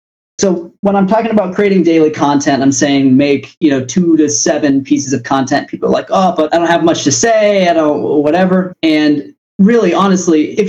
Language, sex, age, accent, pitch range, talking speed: English, male, 30-49, American, 135-185 Hz, 215 wpm